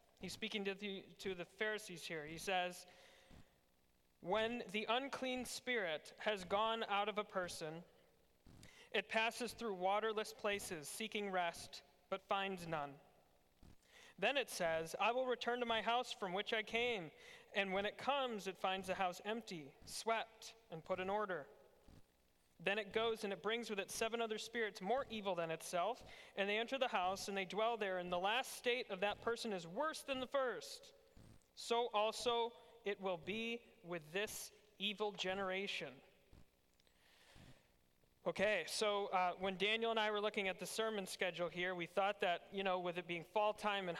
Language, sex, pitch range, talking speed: English, male, 175-220 Hz, 170 wpm